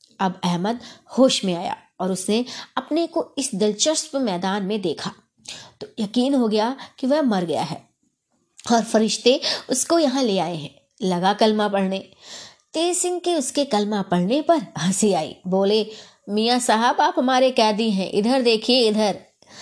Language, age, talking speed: Hindi, 20-39, 155 wpm